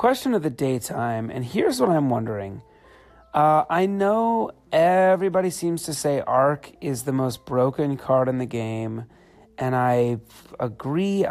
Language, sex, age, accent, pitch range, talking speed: English, male, 30-49, American, 125-180 Hz, 150 wpm